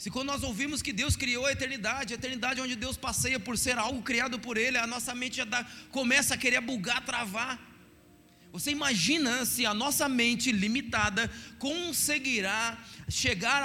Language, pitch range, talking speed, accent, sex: Portuguese, 235-280 Hz, 170 wpm, Brazilian, male